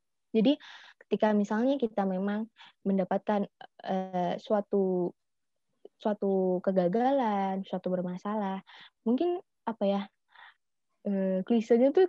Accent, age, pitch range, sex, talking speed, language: native, 20-39, 195-250 Hz, female, 90 wpm, Indonesian